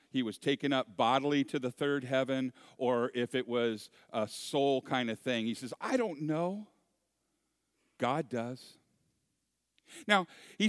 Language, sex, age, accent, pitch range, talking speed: English, male, 50-69, American, 120-180 Hz, 150 wpm